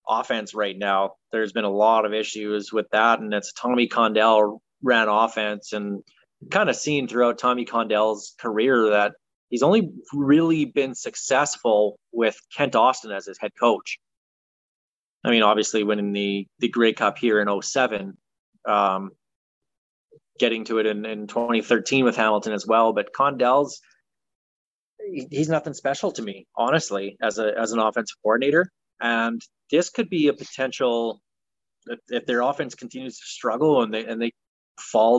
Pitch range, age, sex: 105-125 Hz, 20-39, male